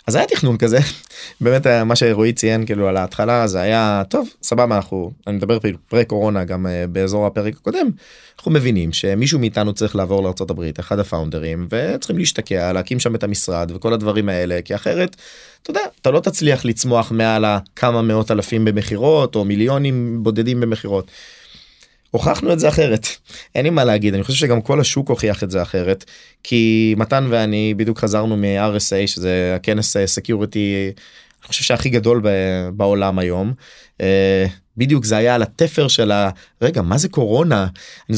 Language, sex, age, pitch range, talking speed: English, male, 20-39, 100-125 Hz, 145 wpm